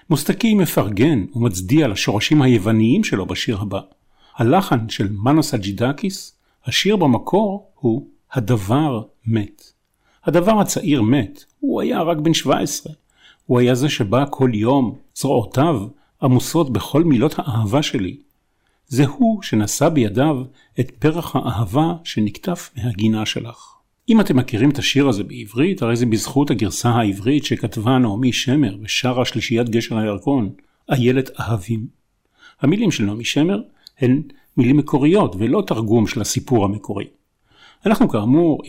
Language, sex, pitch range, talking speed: Hebrew, male, 115-150 Hz, 125 wpm